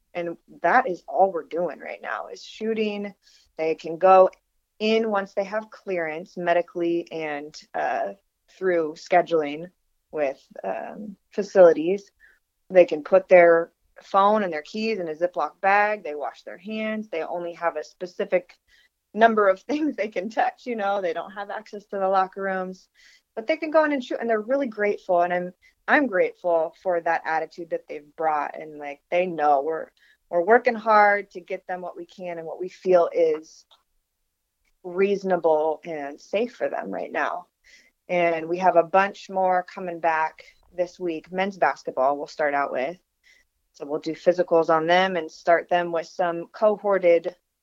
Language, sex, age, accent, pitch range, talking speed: English, female, 30-49, American, 165-205 Hz, 175 wpm